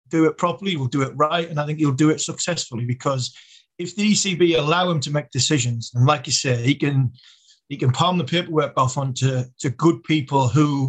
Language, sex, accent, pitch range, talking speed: English, male, British, 130-155 Hz, 225 wpm